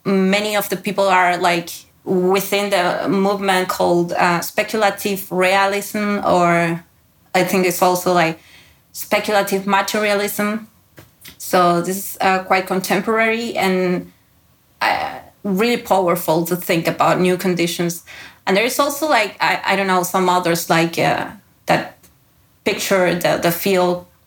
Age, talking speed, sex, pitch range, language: 20-39, 135 wpm, female, 175-200 Hz, English